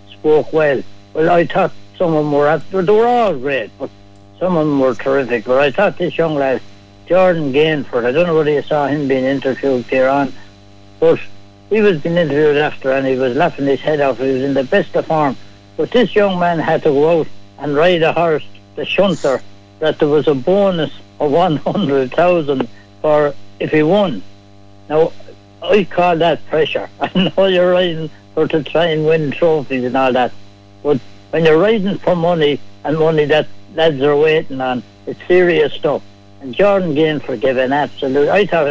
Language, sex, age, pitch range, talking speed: English, male, 60-79, 125-165 Hz, 195 wpm